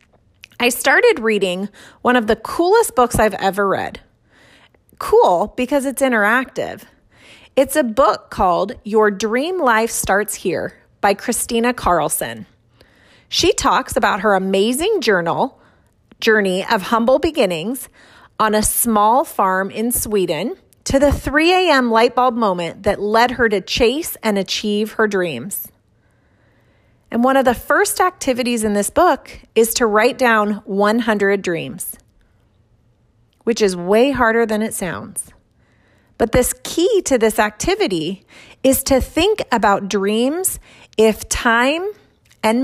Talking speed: 135 wpm